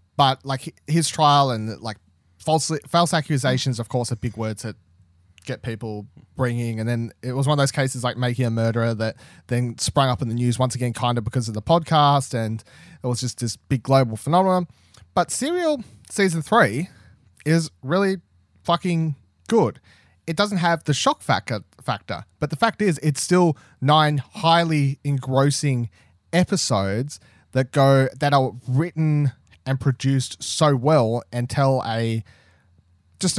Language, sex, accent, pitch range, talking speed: English, male, Australian, 115-150 Hz, 165 wpm